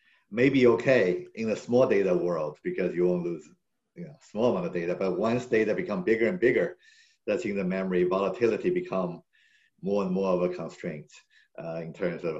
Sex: male